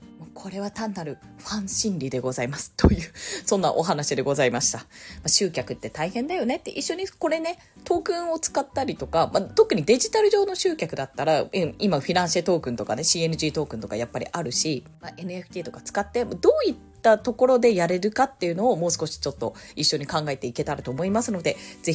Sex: female